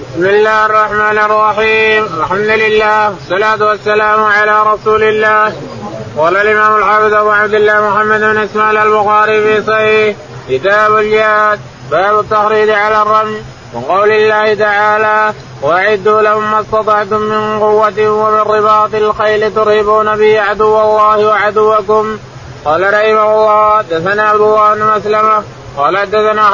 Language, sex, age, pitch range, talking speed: Arabic, male, 20-39, 210-215 Hz, 125 wpm